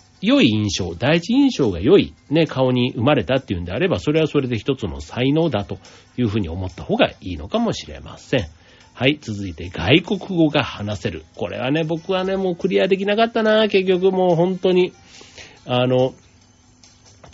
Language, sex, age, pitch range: Japanese, male, 40-59, 100-150 Hz